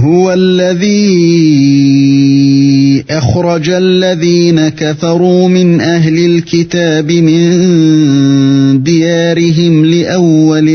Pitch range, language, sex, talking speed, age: 140-170 Hz, Arabic, male, 60 wpm, 30-49